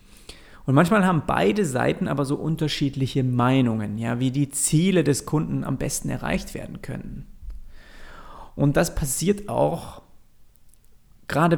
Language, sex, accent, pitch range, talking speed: German, male, German, 120-160 Hz, 130 wpm